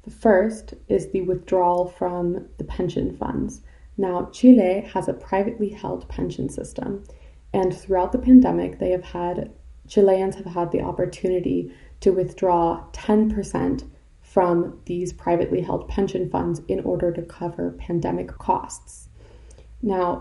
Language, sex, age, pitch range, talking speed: English, female, 20-39, 170-195 Hz, 135 wpm